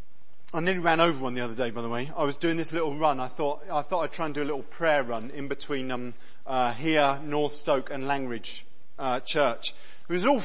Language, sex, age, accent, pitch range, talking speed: English, male, 40-59, British, 150-190 Hz, 245 wpm